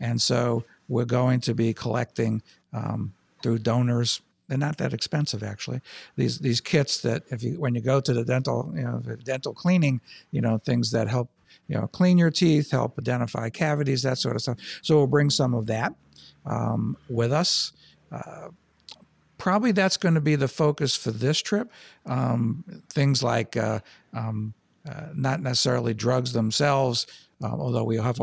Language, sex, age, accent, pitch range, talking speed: English, male, 60-79, American, 115-140 Hz, 175 wpm